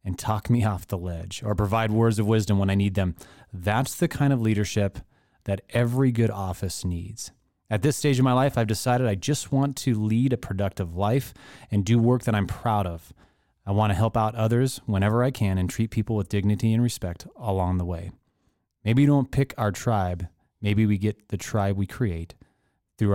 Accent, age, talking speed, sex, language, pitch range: American, 30-49, 210 wpm, male, English, 100-125 Hz